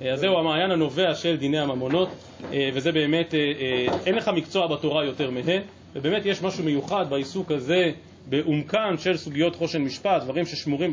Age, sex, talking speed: 30-49, male, 155 wpm